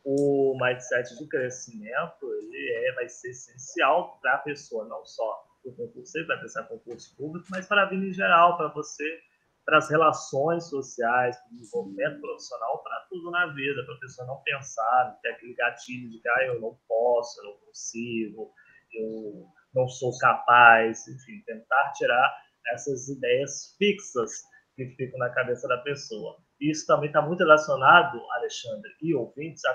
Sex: male